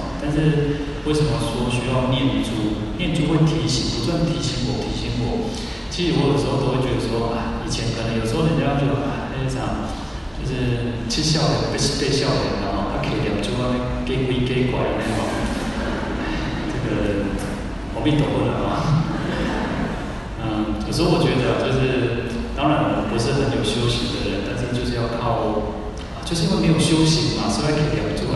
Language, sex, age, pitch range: Chinese, male, 30-49, 110-140 Hz